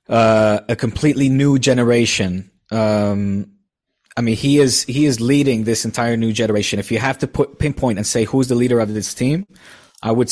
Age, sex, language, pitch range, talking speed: 20-39, male, English, 100-120 Hz, 190 wpm